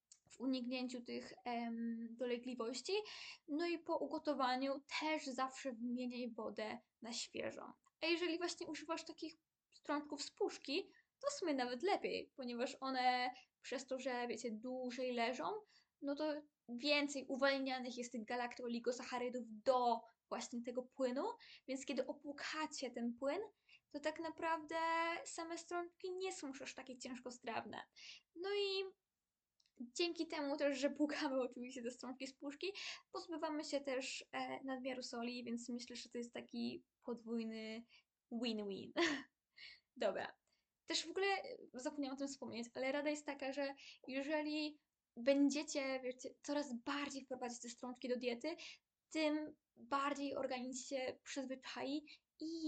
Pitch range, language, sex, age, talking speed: 245-310 Hz, Polish, female, 10-29, 135 wpm